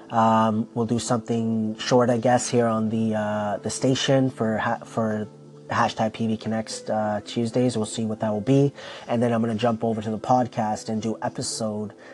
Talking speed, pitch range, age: 195 wpm, 110-125 Hz, 30-49